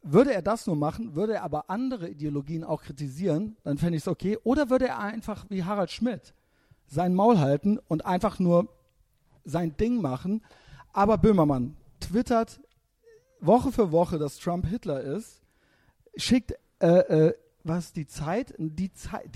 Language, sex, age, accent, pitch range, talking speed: German, male, 50-69, German, 145-210 Hz, 160 wpm